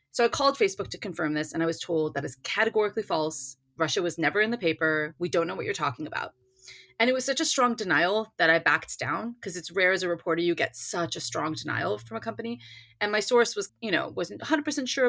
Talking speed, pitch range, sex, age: 250 wpm, 170-235 Hz, female, 30-49